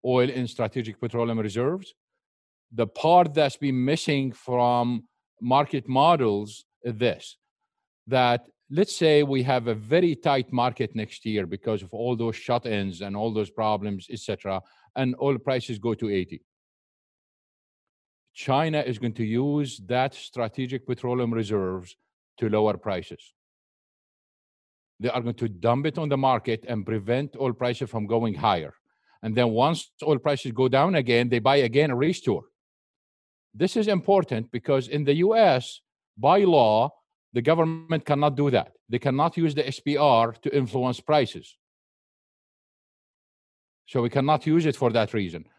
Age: 50-69